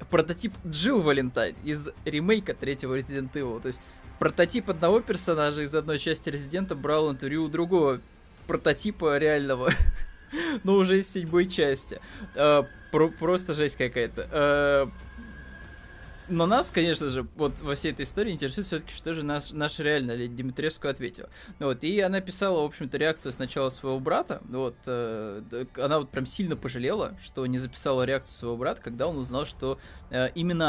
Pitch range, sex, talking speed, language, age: 130-170 Hz, male, 145 wpm, Russian, 20-39